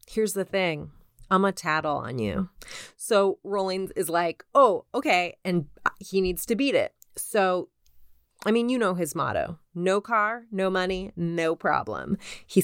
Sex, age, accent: female, 30-49, American